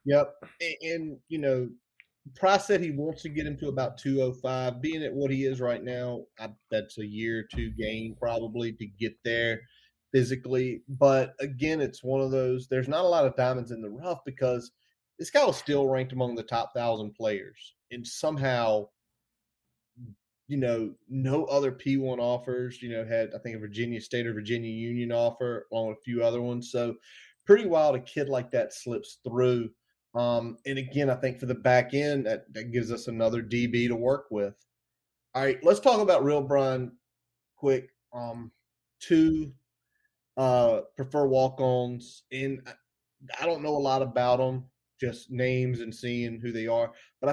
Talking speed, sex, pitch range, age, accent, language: 180 wpm, male, 120-135 Hz, 30-49, American, English